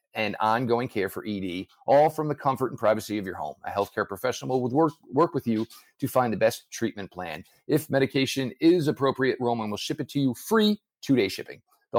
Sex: male